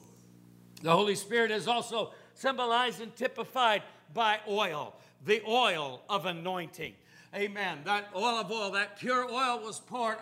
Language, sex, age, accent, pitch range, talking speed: English, male, 60-79, American, 195-240 Hz, 140 wpm